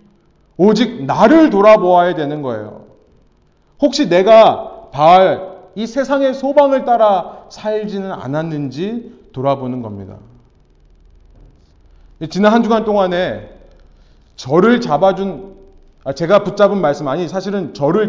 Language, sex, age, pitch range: Korean, male, 30-49, 130-190 Hz